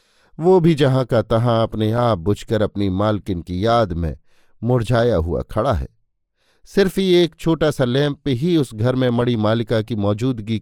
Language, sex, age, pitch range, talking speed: Hindi, male, 50-69, 110-145 Hz, 175 wpm